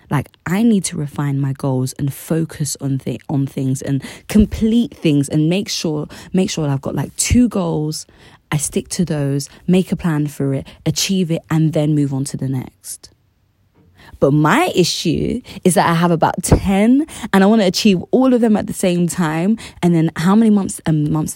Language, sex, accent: English, female, British